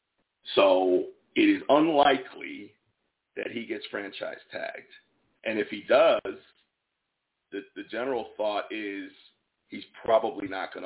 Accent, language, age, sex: American, English, 40-59, male